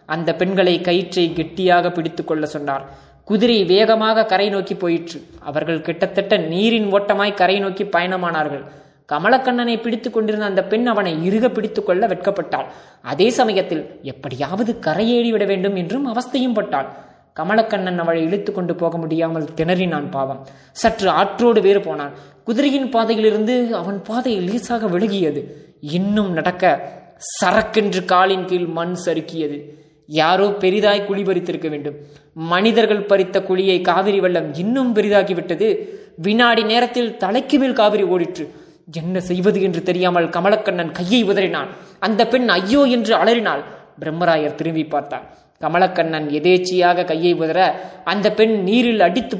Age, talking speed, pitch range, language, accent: 20-39, 120 wpm, 170-220 Hz, Tamil, native